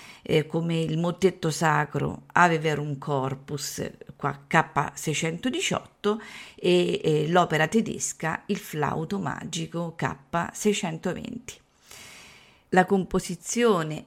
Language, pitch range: Italian, 150-180 Hz